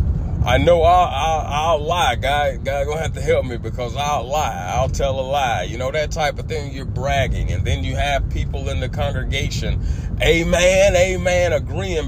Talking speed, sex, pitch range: 195 wpm, male, 85-105 Hz